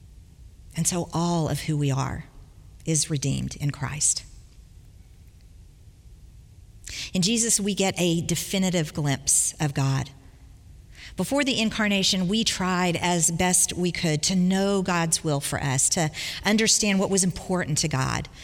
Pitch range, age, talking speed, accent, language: 135-190 Hz, 50-69, 135 wpm, American, English